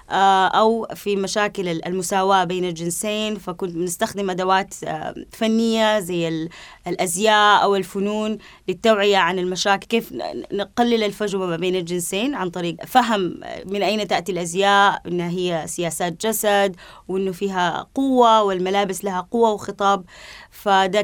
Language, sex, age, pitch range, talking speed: Arabic, female, 20-39, 185-215 Hz, 120 wpm